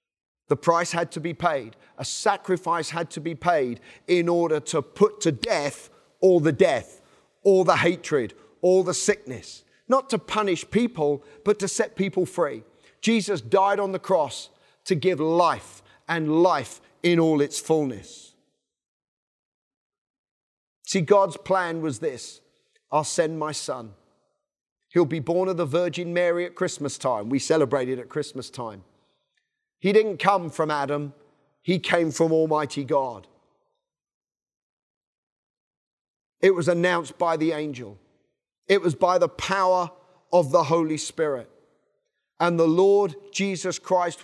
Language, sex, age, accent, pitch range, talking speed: English, male, 40-59, British, 150-190 Hz, 140 wpm